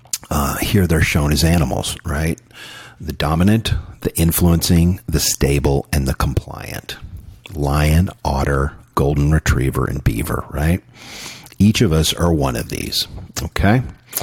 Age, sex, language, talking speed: 50-69, male, English, 130 wpm